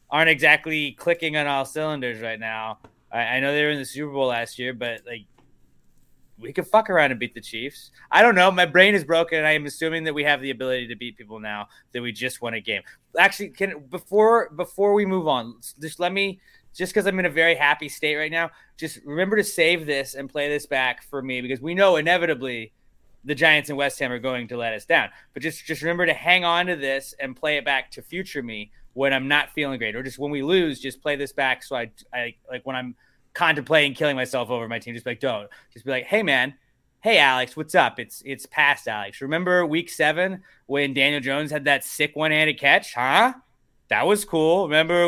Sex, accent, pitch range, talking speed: male, American, 135-170 Hz, 235 wpm